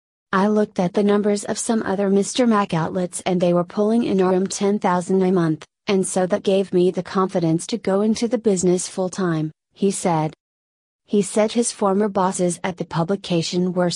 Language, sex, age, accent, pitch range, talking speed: English, female, 30-49, American, 175-200 Hz, 190 wpm